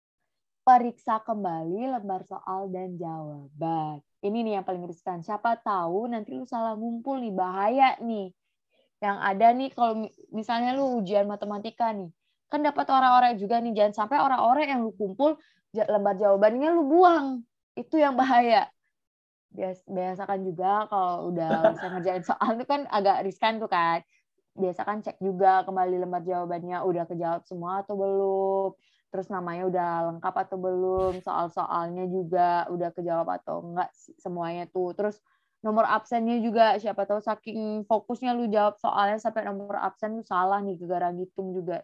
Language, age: Indonesian, 20-39